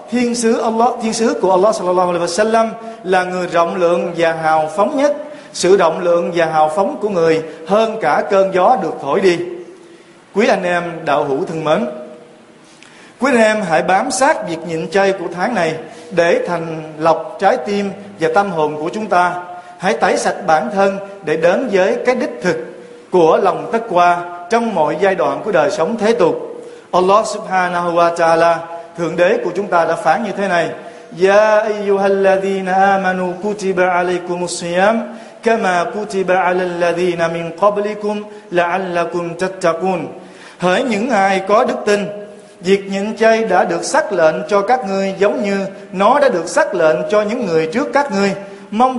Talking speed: 175 wpm